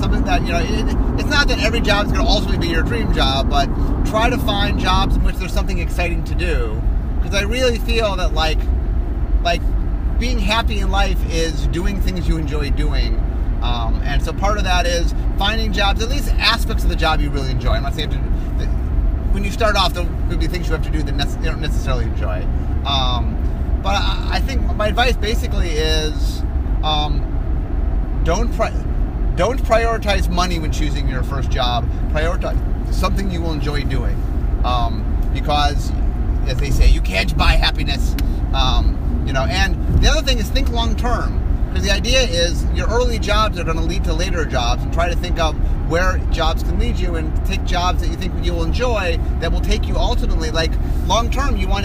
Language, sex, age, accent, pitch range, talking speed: English, male, 30-49, American, 65-80 Hz, 200 wpm